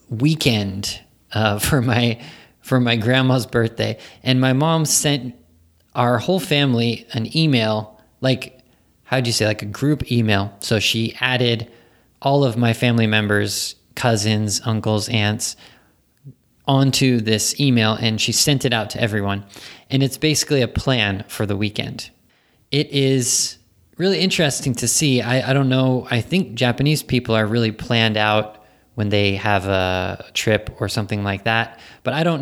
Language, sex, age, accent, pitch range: Japanese, male, 20-39, American, 110-130 Hz